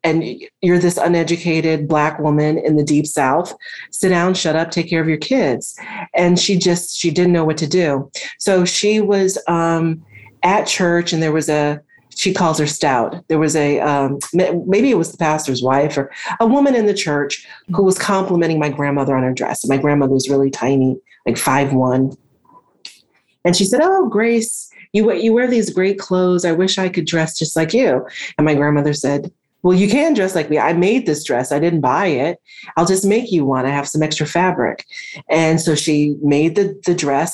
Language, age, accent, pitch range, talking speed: English, 30-49, American, 150-190 Hz, 205 wpm